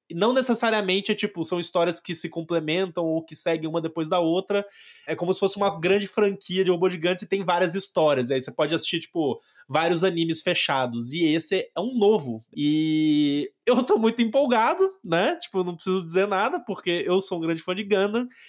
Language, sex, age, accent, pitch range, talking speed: Portuguese, male, 20-39, Brazilian, 160-205 Hz, 210 wpm